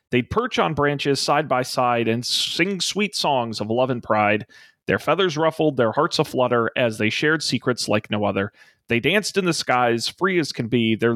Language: English